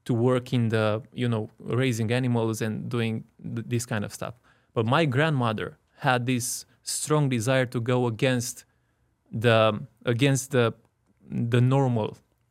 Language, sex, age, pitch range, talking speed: English, male, 20-39, 110-130 Hz, 140 wpm